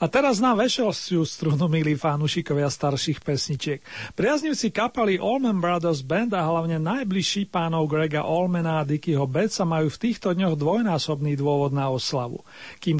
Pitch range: 155-190 Hz